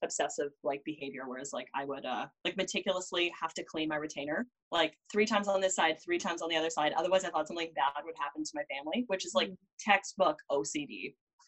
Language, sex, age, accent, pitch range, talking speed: English, female, 20-39, American, 155-205 Hz, 220 wpm